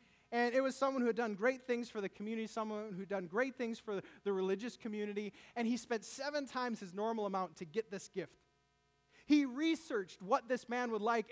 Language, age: English, 20-39